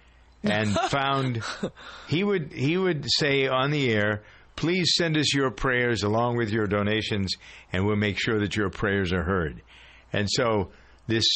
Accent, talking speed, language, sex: American, 165 wpm, English, male